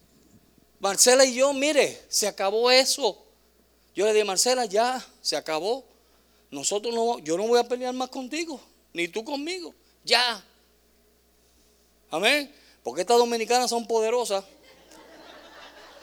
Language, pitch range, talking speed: Spanish, 190-255 Hz, 125 wpm